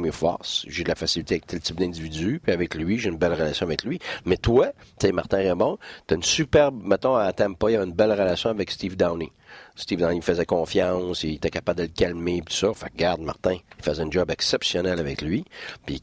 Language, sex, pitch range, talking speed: French, male, 75-105 Hz, 235 wpm